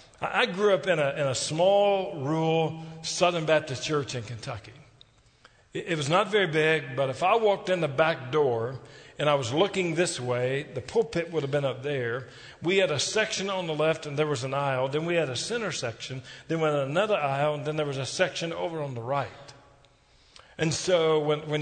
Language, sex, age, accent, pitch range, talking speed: English, male, 50-69, American, 140-180 Hz, 215 wpm